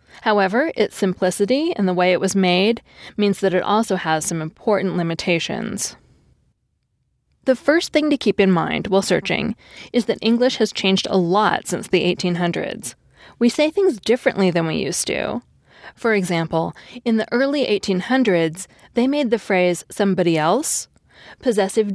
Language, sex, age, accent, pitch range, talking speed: English, female, 20-39, American, 180-235 Hz, 155 wpm